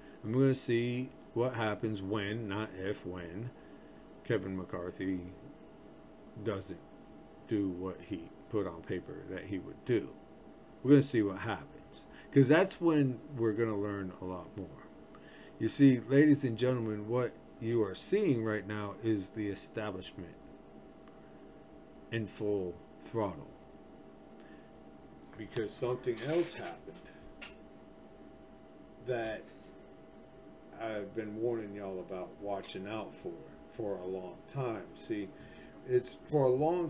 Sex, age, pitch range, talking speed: male, 50-69, 100-125 Hz, 130 wpm